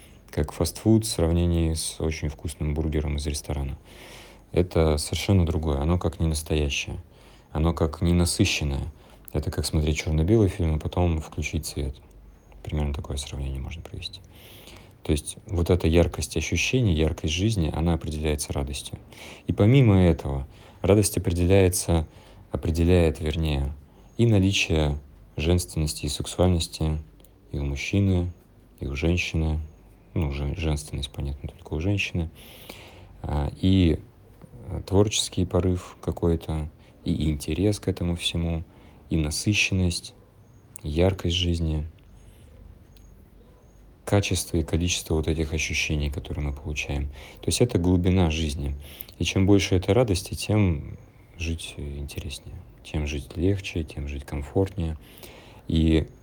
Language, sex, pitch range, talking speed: Russian, male, 75-95 Hz, 120 wpm